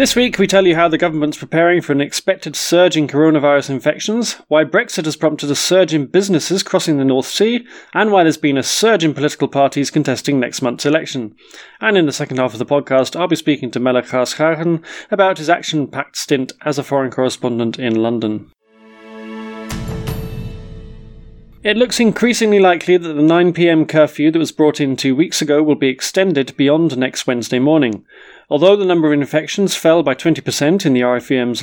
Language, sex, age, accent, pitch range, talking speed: English, male, 30-49, British, 130-175 Hz, 185 wpm